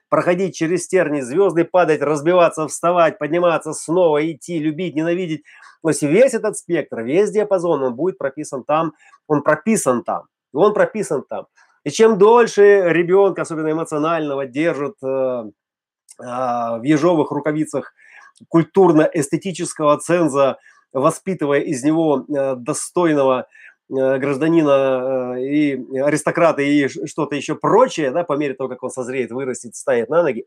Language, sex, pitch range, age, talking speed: Russian, male, 140-180 Hz, 30-49, 125 wpm